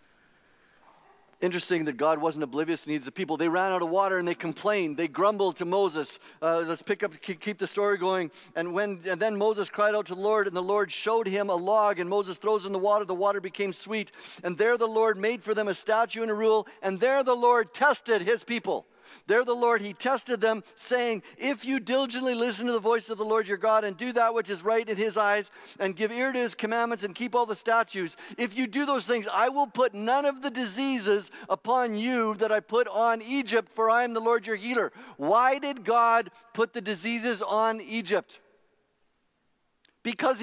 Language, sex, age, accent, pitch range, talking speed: English, male, 50-69, American, 200-245 Hz, 225 wpm